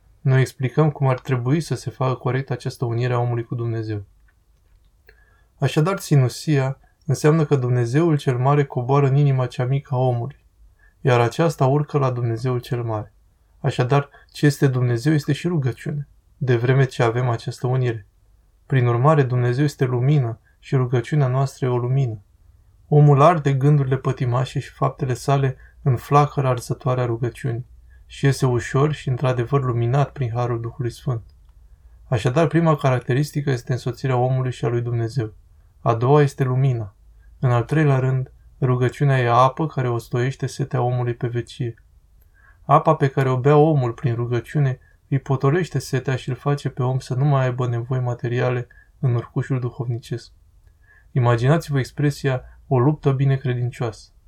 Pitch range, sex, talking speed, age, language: 120-140 Hz, male, 155 wpm, 20-39, Romanian